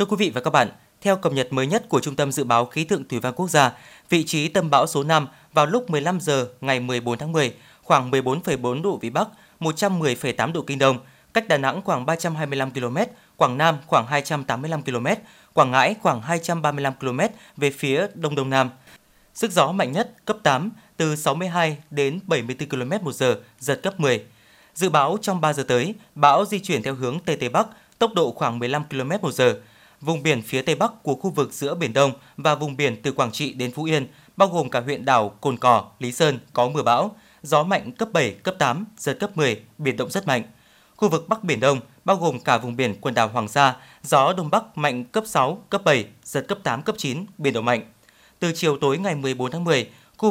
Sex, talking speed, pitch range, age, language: male, 220 wpm, 130-175 Hz, 20-39, Vietnamese